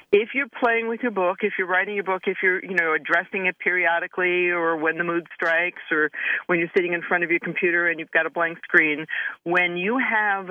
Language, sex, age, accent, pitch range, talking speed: English, female, 50-69, American, 155-220 Hz, 235 wpm